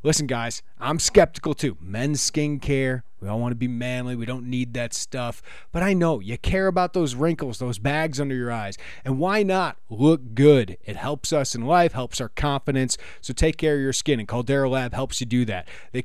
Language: English